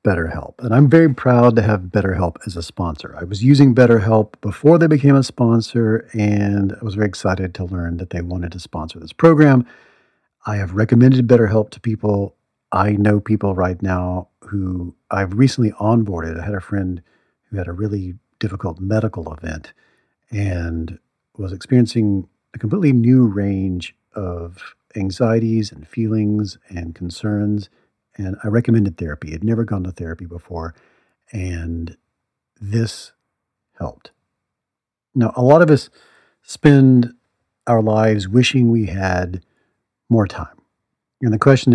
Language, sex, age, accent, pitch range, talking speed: English, male, 50-69, American, 95-120 Hz, 145 wpm